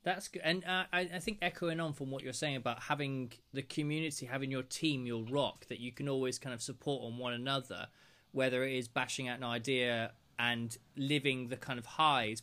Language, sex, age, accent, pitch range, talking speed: English, male, 20-39, British, 125-155 Hz, 215 wpm